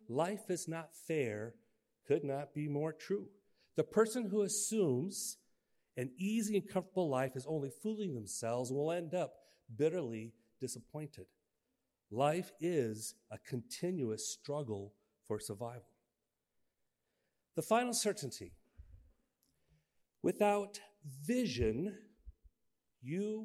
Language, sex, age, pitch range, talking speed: English, male, 40-59, 125-195 Hz, 100 wpm